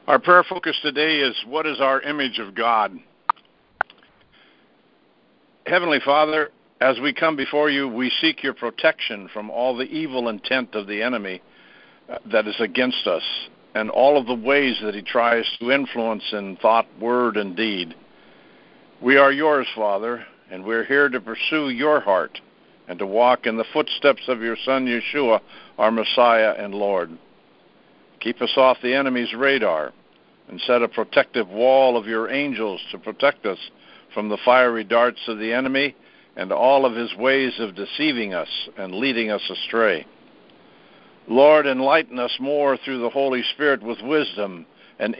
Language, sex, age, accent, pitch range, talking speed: English, male, 60-79, American, 115-140 Hz, 160 wpm